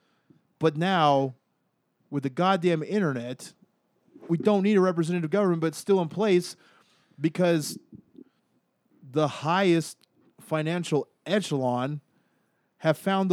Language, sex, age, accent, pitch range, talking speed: English, male, 30-49, American, 135-175 Hz, 110 wpm